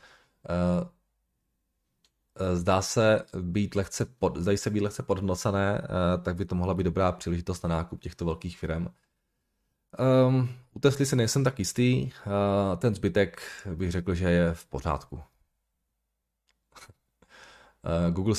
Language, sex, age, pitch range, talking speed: Czech, male, 20-39, 85-105 Hz, 125 wpm